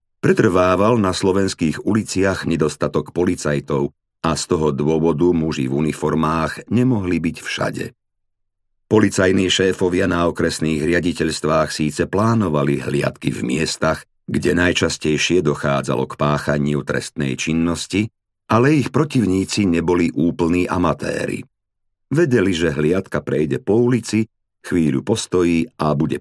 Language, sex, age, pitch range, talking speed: Slovak, male, 50-69, 75-100 Hz, 110 wpm